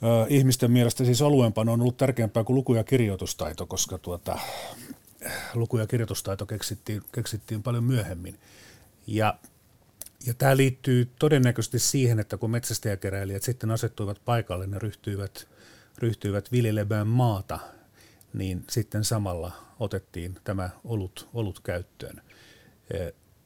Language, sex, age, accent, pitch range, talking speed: Finnish, male, 40-59, native, 100-120 Hz, 115 wpm